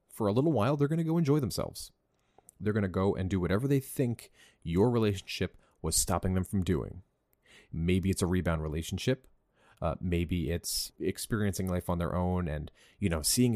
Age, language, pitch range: 30-49, English, 90-110 Hz